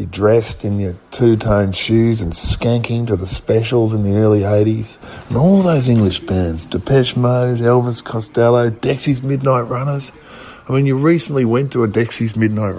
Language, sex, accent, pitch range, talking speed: English, male, Australian, 105-135 Hz, 170 wpm